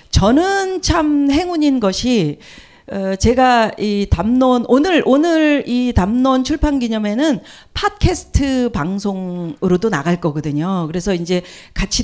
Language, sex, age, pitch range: Korean, female, 40-59, 195-265 Hz